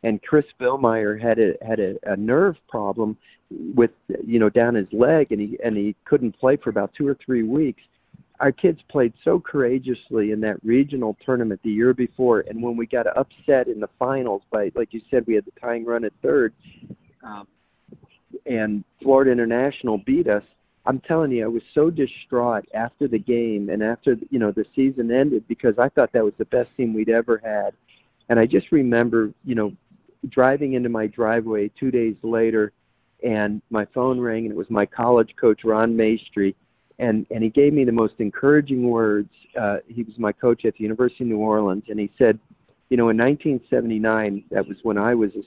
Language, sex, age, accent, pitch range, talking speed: English, male, 40-59, American, 105-120 Hz, 195 wpm